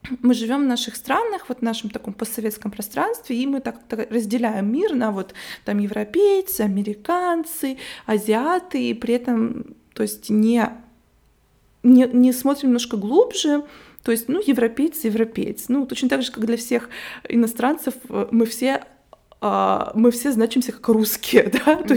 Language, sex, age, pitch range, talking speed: Russian, female, 20-39, 210-255 Hz, 150 wpm